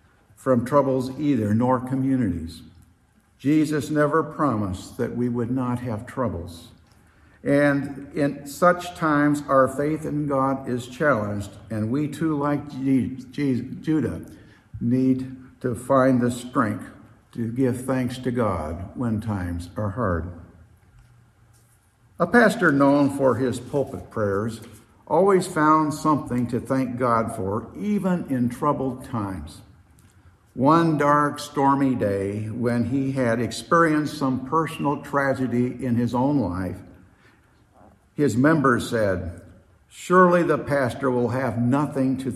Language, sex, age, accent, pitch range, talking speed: English, male, 60-79, American, 105-140 Hz, 120 wpm